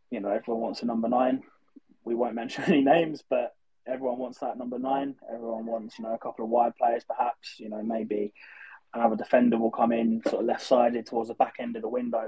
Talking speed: 230 wpm